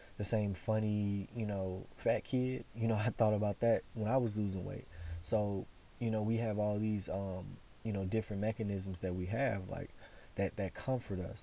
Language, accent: English, American